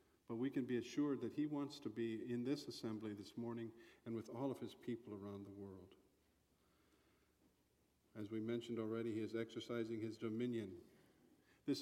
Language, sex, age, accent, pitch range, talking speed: English, male, 50-69, American, 110-140 Hz, 175 wpm